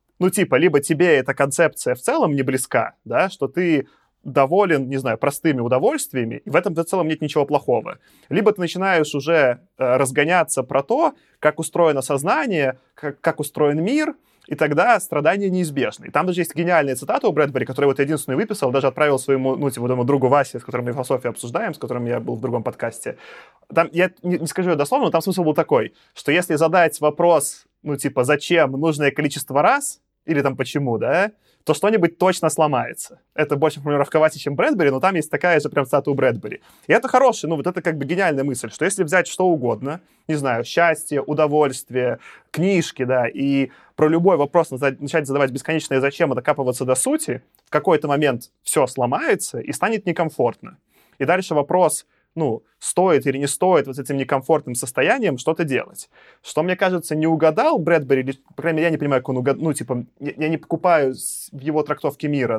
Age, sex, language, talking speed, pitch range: 20-39, male, Russian, 190 wpm, 135-170 Hz